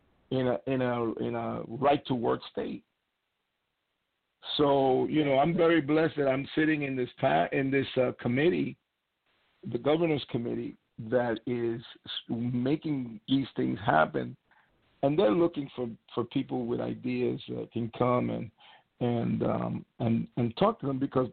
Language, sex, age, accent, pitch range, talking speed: English, male, 50-69, American, 125-155 Hz, 155 wpm